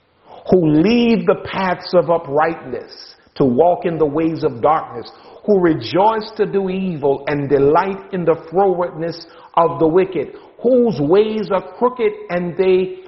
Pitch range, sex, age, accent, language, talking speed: 140-200 Hz, male, 50-69, American, English, 145 wpm